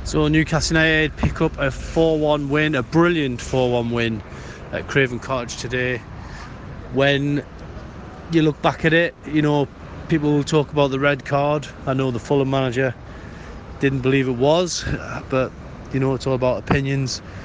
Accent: British